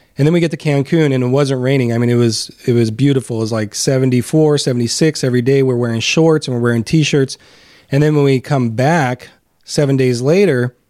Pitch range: 125-145 Hz